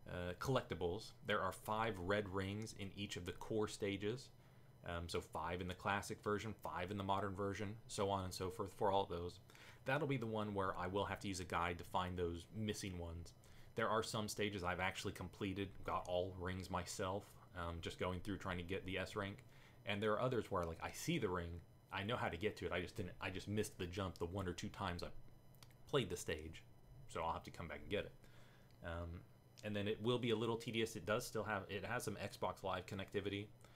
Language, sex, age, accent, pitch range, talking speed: English, male, 30-49, American, 90-110 Hz, 240 wpm